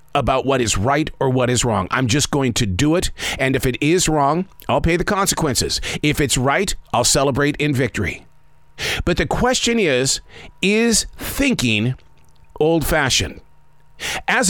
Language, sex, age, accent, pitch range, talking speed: English, male, 50-69, American, 130-185 Hz, 160 wpm